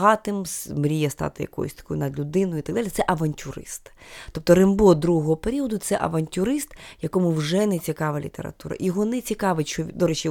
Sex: female